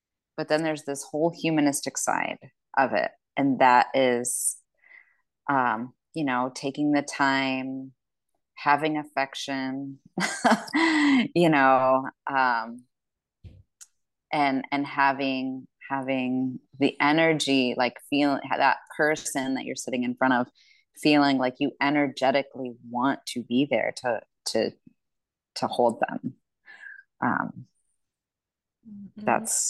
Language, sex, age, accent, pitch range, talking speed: English, female, 20-39, American, 135-175 Hz, 110 wpm